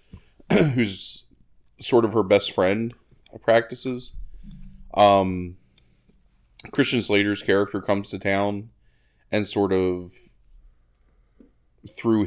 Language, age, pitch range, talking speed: English, 20-39, 85-105 Hz, 90 wpm